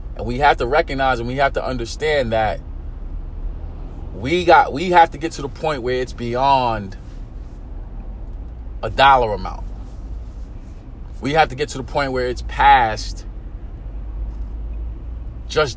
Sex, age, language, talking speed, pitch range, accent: male, 40-59, English, 135 wpm, 95-145 Hz, American